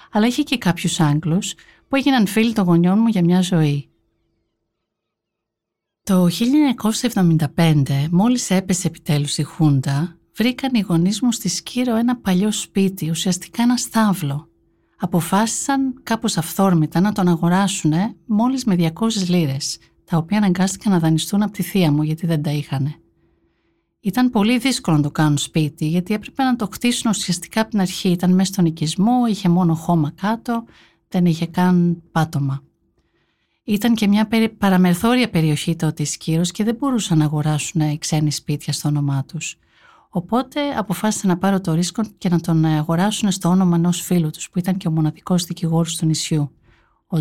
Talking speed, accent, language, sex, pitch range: 160 wpm, native, Greek, female, 160-215 Hz